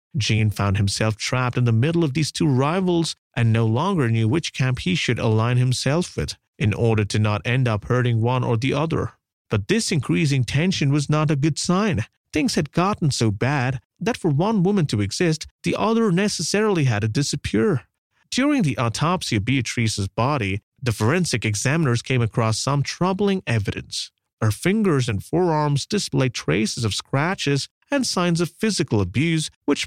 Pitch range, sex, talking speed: 115-165 Hz, male, 175 wpm